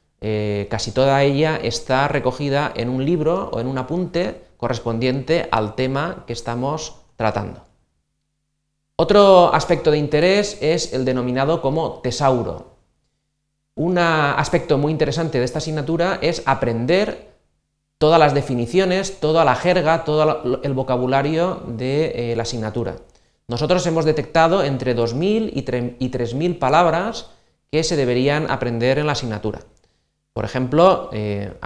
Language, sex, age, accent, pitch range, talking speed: Spanish, male, 30-49, Spanish, 115-155 Hz, 130 wpm